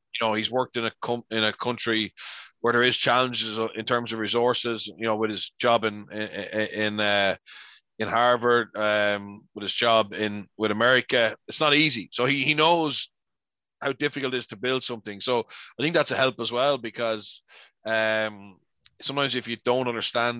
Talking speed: 190 wpm